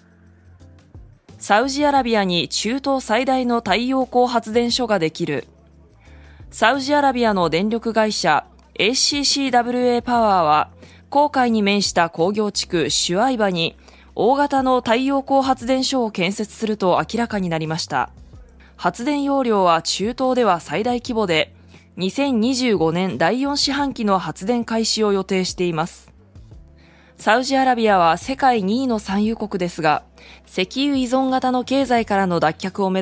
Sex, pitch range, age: female, 155-245 Hz, 20-39